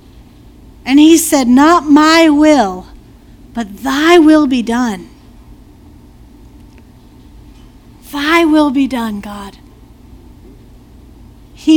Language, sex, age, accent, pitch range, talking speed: English, female, 40-59, American, 255-335 Hz, 85 wpm